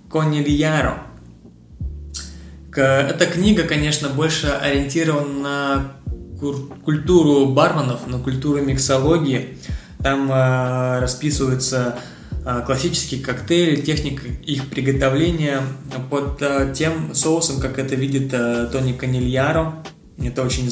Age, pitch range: 20-39, 130-150 Hz